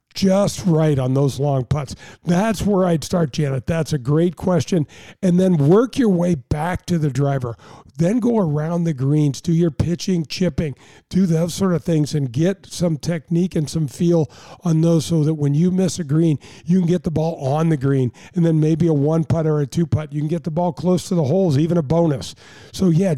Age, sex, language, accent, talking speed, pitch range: 50-69, male, English, American, 225 wpm, 150-180 Hz